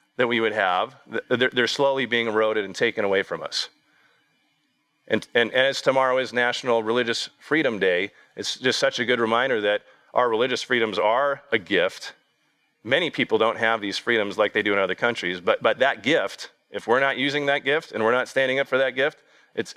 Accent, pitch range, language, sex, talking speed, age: American, 115-140 Hz, English, male, 205 wpm, 40-59